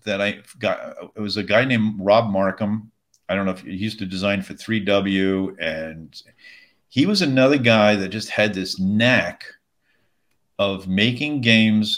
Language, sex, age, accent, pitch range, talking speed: English, male, 50-69, American, 95-120 Hz, 165 wpm